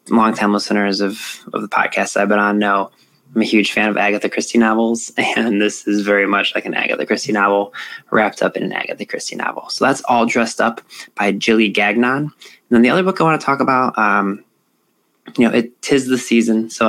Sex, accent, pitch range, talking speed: male, American, 105-115 Hz, 215 wpm